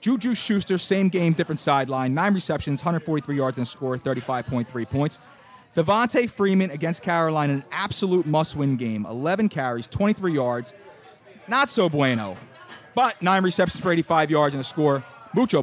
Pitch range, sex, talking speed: 135-185 Hz, male, 155 wpm